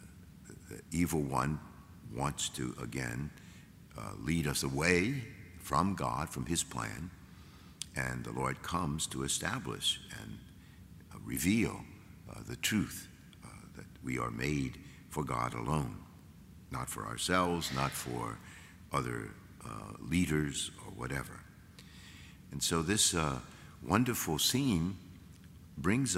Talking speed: 115 wpm